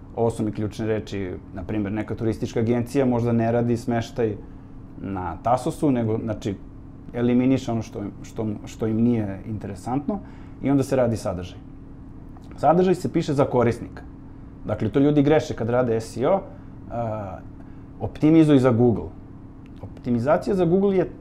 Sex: male